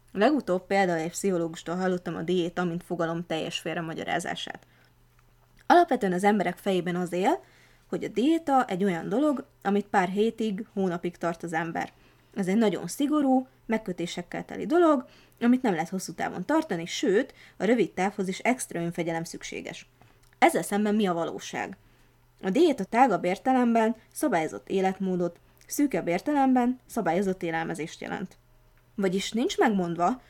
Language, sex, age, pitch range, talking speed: Hungarian, female, 20-39, 175-225 Hz, 140 wpm